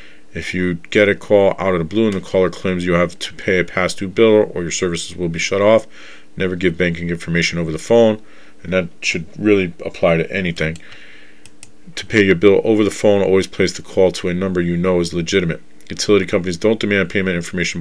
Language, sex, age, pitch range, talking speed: English, male, 40-59, 85-95 Hz, 220 wpm